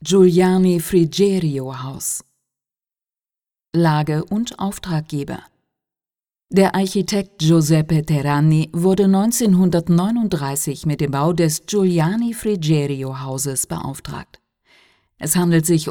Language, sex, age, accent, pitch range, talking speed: Italian, female, 50-69, German, 145-185 Hz, 85 wpm